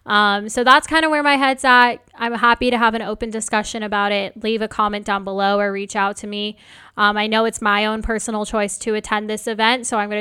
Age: 10-29